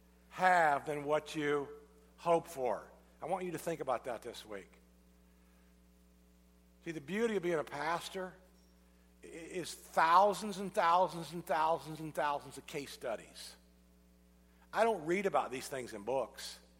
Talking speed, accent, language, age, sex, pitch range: 145 wpm, American, English, 50-69, male, 110-175 Hz